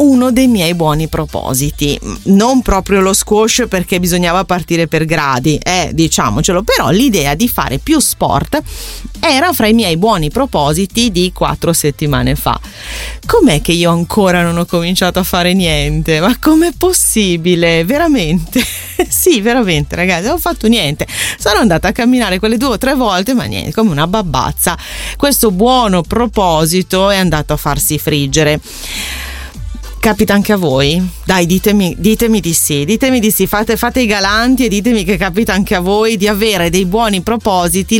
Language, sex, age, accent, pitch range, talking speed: Italian, female, 30-49, native, 170-230 Hz, 165 wpm